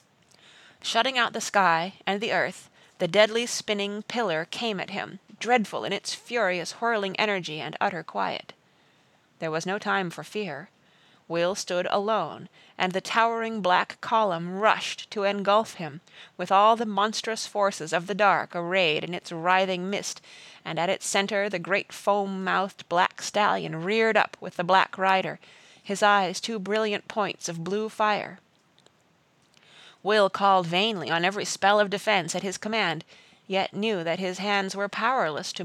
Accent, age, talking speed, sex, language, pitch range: American, 30-49, 160 wpm, female, English, 180-215 Hz